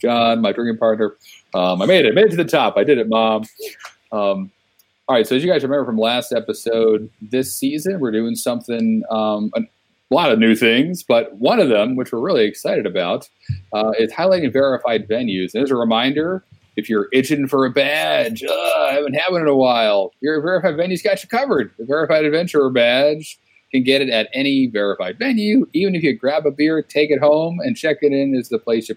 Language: English